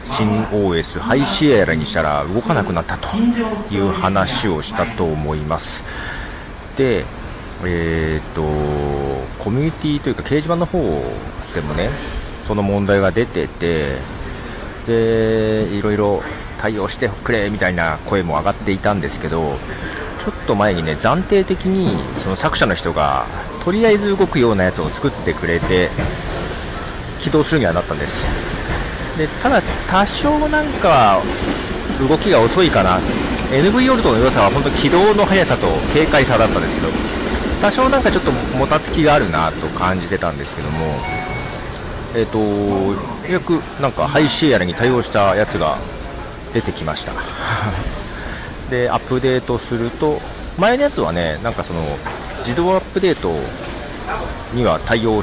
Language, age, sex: Japanese, 40-59, male